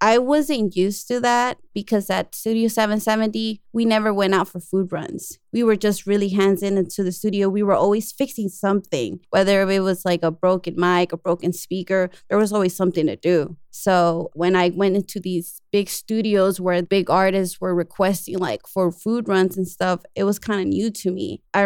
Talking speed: 200 wpm